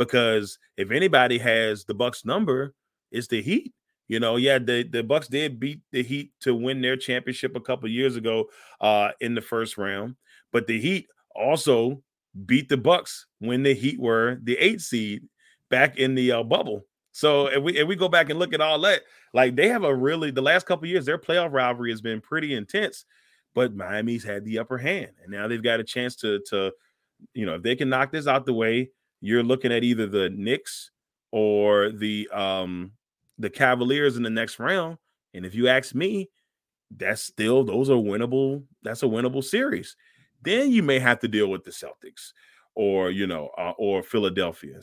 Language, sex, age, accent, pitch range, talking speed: English, male, 30-49, American, 115-155 Hz, 200 wpm